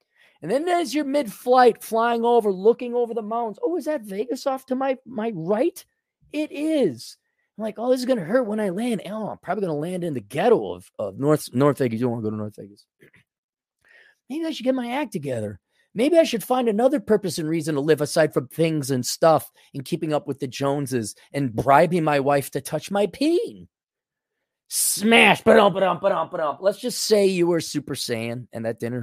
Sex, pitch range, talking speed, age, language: male, 140-230 Hz, 225 wpm, 30-49, English